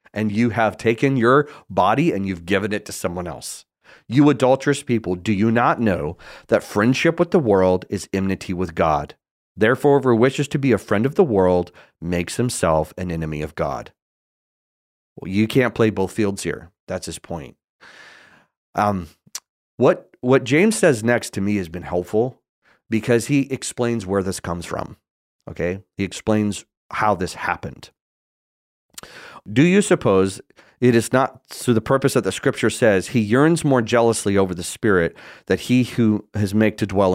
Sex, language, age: male, English, 30-49